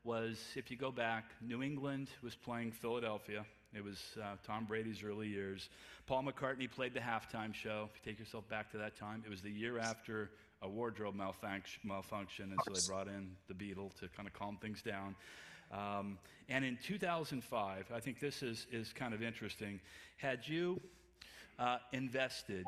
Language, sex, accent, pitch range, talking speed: English, male, American, 100-125 Hz, 180 wpm